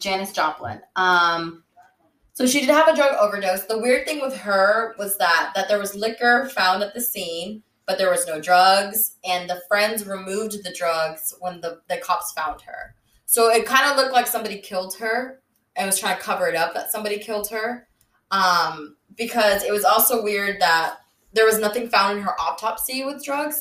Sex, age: female, 20-39